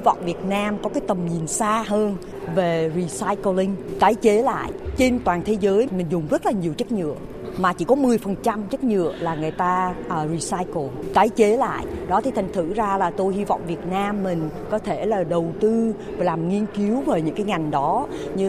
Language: Vietnamese